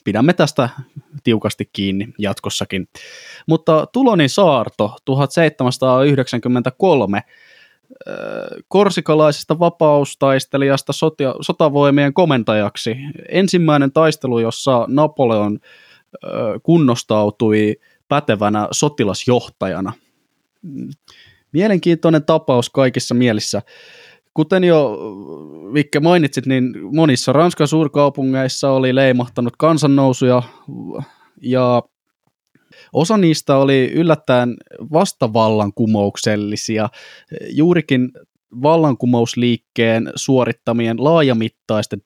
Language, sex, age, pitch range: Finnish, male, 20-39, 115-155 Hz